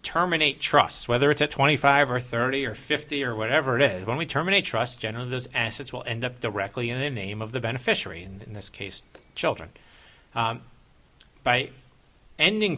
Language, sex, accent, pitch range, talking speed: English, male, American, 105-130 Hz, 185 wpm